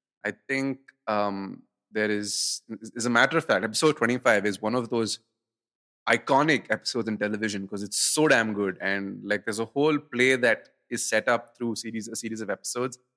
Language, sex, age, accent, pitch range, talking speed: English, male, 20-39, Indian, 110-135 Hz, 185 wpm